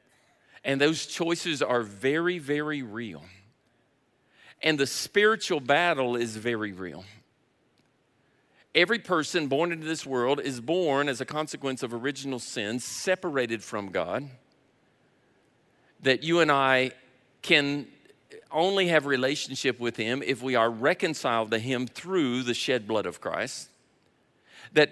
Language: English